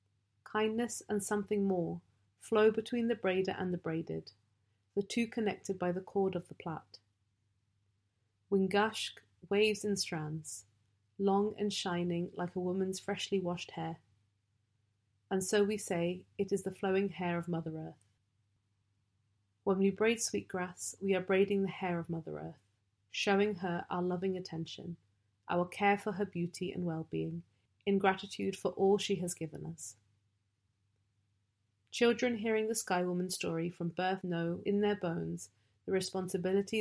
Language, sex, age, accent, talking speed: English, female, 30-49, British, 150 wpm